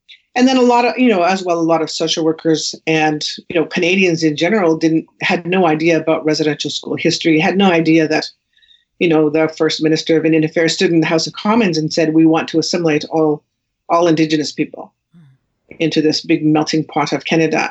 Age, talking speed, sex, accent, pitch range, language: 40-59, 215 wpm, female, American, 155-180 Hz, English